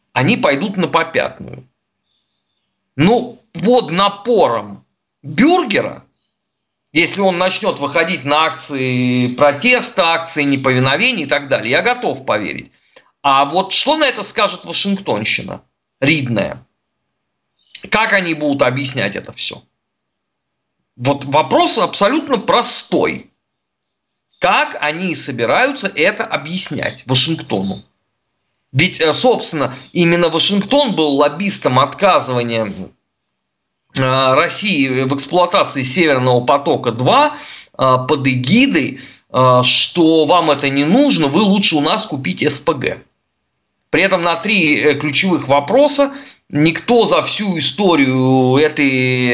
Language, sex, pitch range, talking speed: Russian, male, 135-200 Hz, 100 wpm